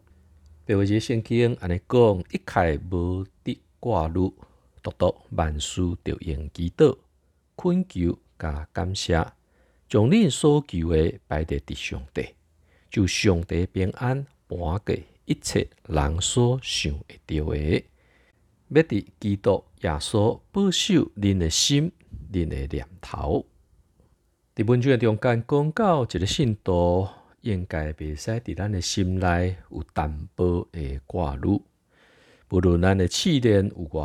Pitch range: 80-105 Hz